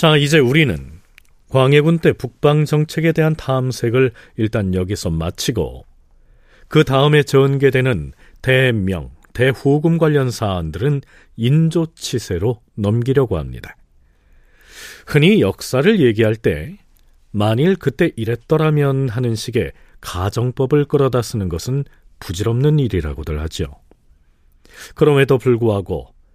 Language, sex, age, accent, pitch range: Korean, male, 40-59, native, 90-140 Hz